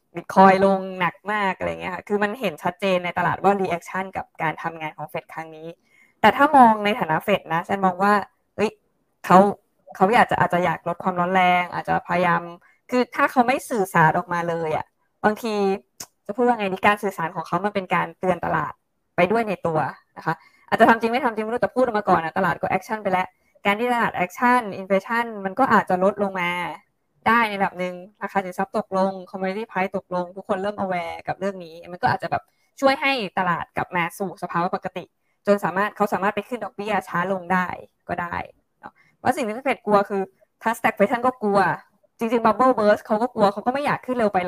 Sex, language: female, Thai